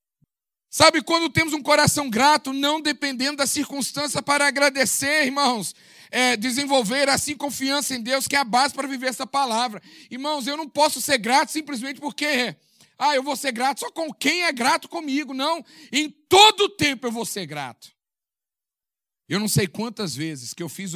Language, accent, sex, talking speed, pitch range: Portuguese, Brazilian, male, 180 wpm, 165-265 Hz